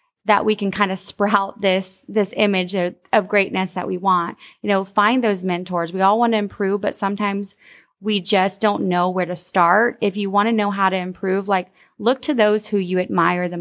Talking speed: 220 wpm